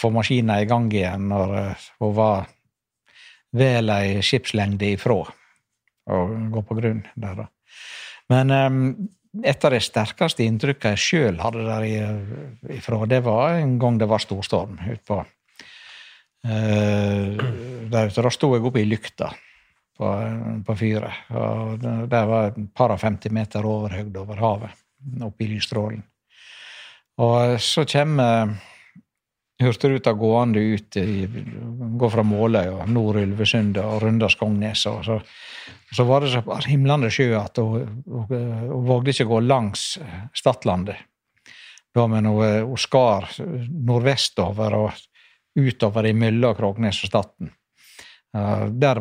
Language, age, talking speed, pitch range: English, 60-79, 135 wpm, 105-125 Hz